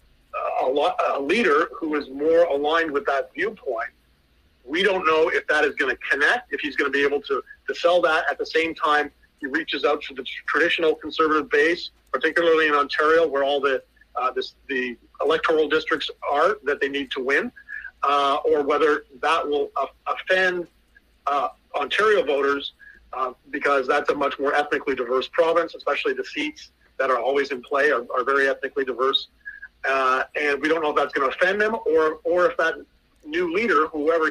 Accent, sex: American, male